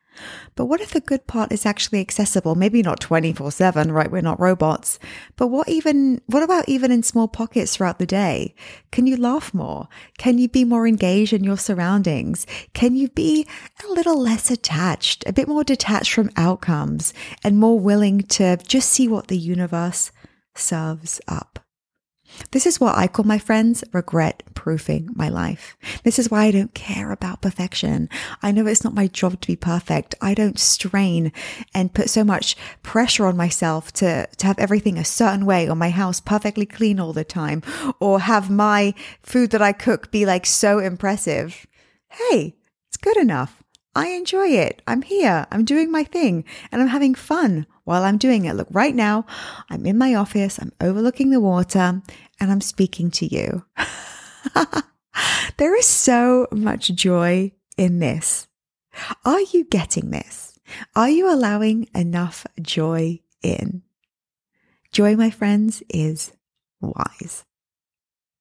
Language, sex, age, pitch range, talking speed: English, female, 20-39, 180-245 Hz, 165 wpm